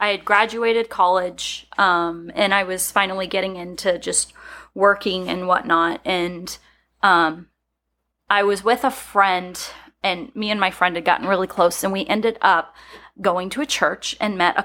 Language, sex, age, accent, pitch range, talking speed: English, female, 20-39, American, 170-215 Hz, 170 wpm